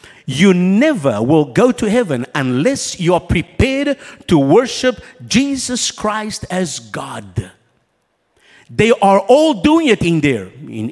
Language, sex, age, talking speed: English, male, 50-69, 130 wpm